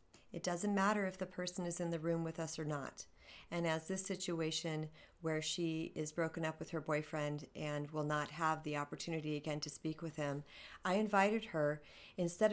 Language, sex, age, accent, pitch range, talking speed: English, female, 40-59, American, 155-195 Hz, 195 wpm